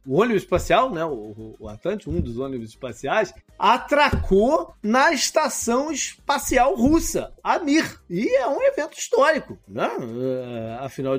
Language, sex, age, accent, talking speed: Portuguese, male, 40-59, Brazilian, 130 wpm